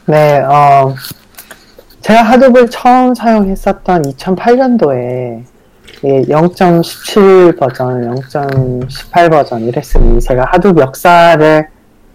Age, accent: 40-59, native